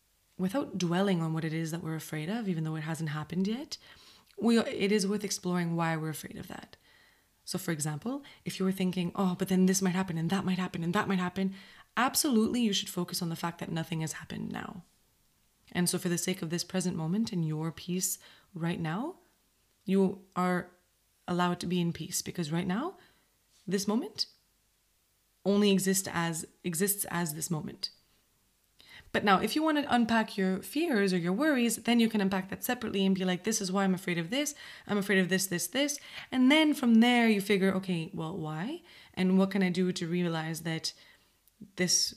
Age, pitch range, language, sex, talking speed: 20-39, 170-205 Hz, English, female, 200 wpm